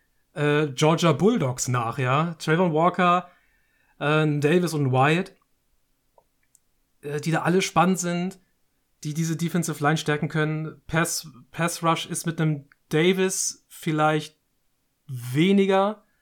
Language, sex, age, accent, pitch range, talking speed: German, male, 30-49, German, 145-170 Hz, 115 wpm